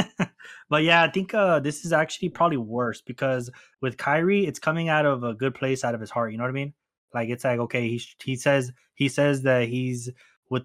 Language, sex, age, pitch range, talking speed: English, male, 20-39, 120-145 Hz, 235 wpm